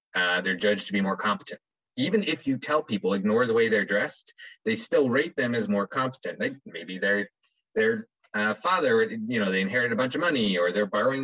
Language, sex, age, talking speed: English, male, 20-39, 215 wpm